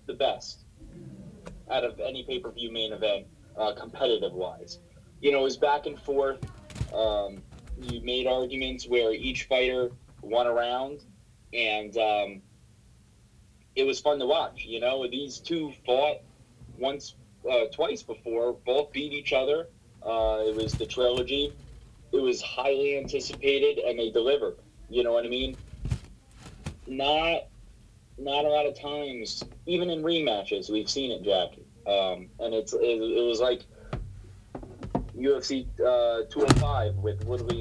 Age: 30-49